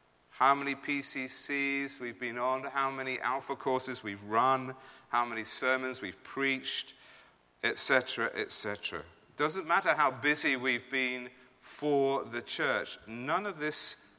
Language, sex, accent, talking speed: English, male, British, 130 wpm